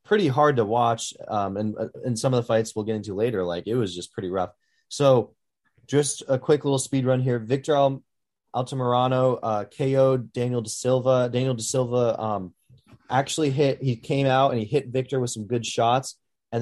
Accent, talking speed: American, 200 wpm